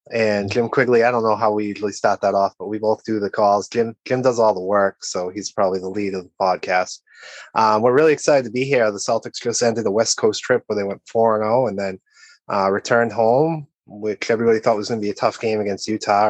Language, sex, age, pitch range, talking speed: English, male, 20-39, 110-140 Hz, 250 wpm